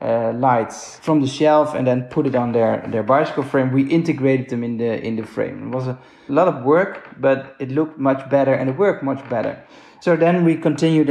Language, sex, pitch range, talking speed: English, male, 130-155 Hz, 225 wpm